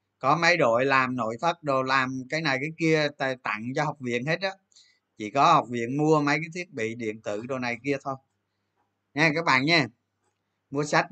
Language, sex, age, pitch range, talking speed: Vietnamese, male, 20-39, 110-160 Hz, 210 wpm